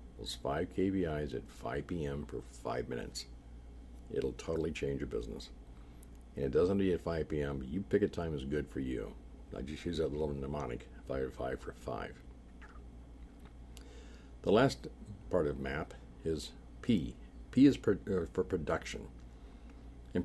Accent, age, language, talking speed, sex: American, 60-79, English, 165 wpm, male